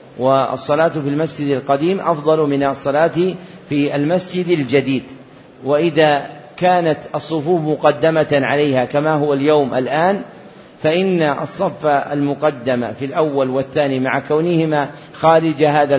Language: Arabic